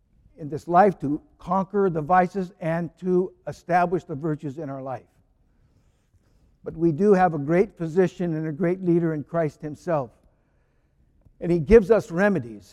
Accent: American